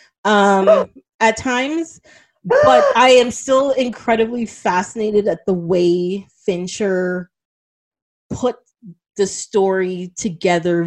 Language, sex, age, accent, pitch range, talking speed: English, female, 20-39, American, 170-205 Hz, 95 wpm